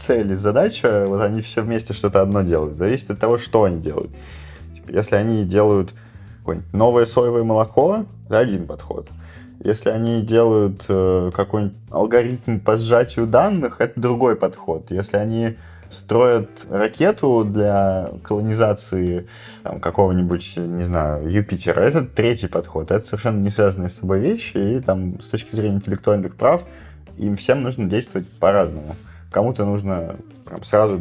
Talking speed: 140 wpm